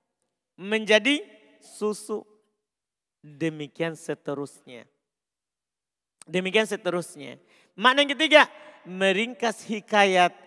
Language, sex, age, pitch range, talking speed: Indonesian, male, 40-59, 155-220 Hz, 65 wpm